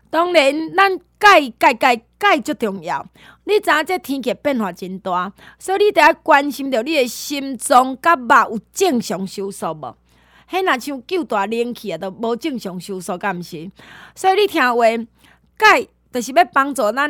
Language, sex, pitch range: Chinese, female, 220-305 Hz